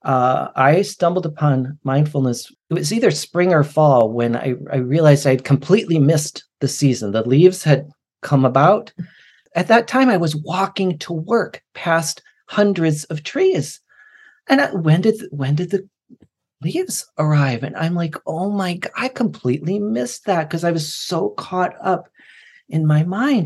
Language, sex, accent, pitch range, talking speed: English, male, American, 135-175 Hz, 165 wpm